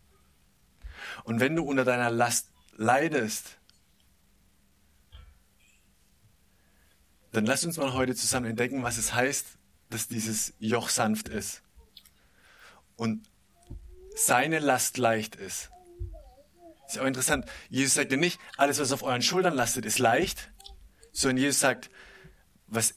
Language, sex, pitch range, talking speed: German, male, 115-170 Hz, 125 wpm